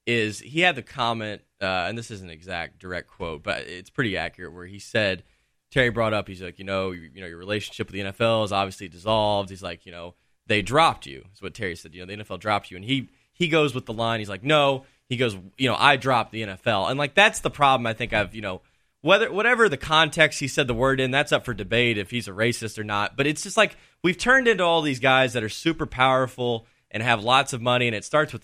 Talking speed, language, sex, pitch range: 265 wpm, English, male, 105-135 Hz